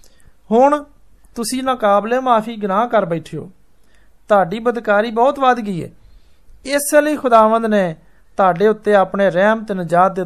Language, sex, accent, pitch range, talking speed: Hindi, male, native, 180-225 Hz, 125 wpm